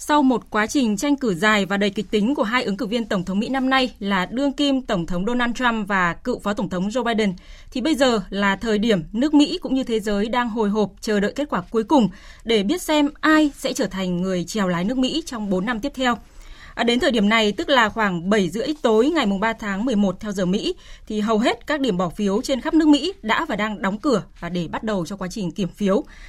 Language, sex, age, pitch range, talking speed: Vietnamese, female, 20-39, 205-270 Hz, 265 wpm